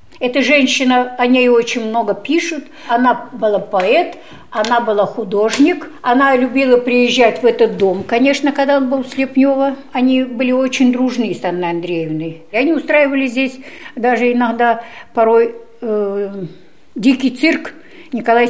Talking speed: 140 wpm